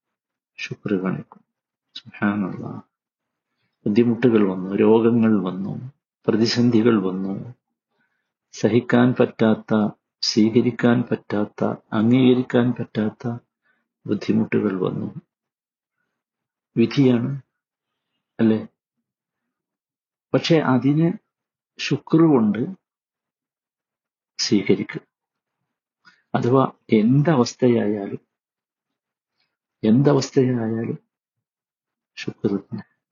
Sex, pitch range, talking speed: male, 110-130 Hz, 50 wpm